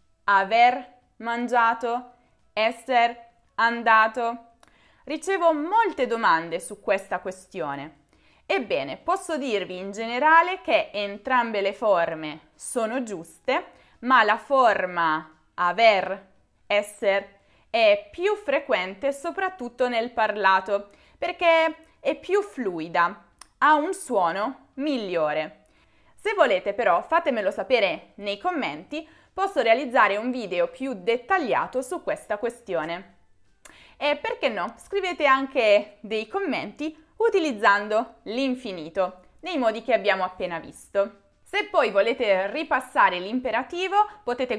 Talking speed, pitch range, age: 105 wpm, 200-305 Hz, 20-39